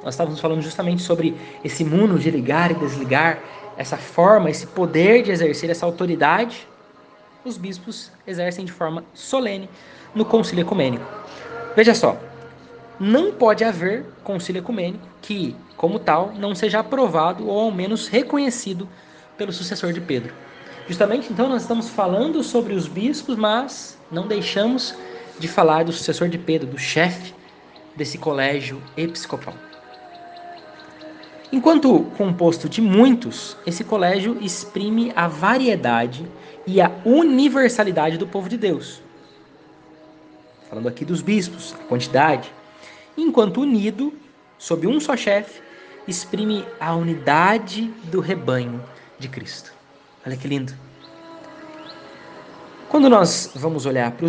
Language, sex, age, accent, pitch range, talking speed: Portuguese, male, 20-39, Brazilian, 165-230 Hz, 125 wpm